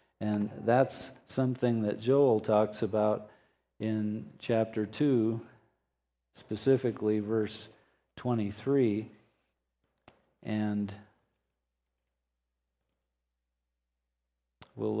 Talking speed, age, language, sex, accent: 60 wpm, 50-69, English, male, American